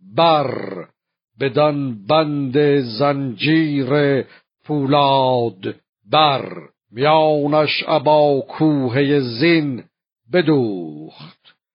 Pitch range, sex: 130-155 Hz, male